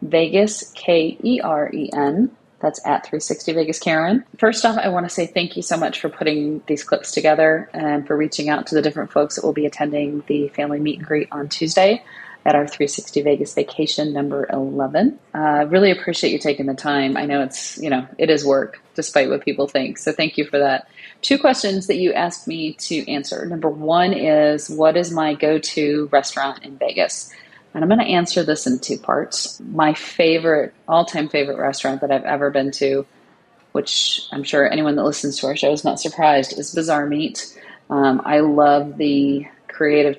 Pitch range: 140-165 Hz